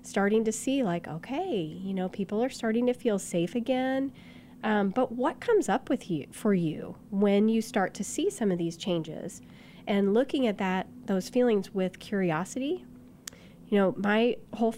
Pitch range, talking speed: 185-230 Hz, 180 wpm